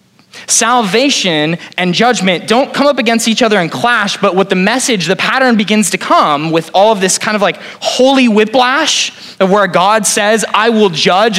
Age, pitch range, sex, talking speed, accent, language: 20-39, 150-210 Hz, male, 190 wpm, American, English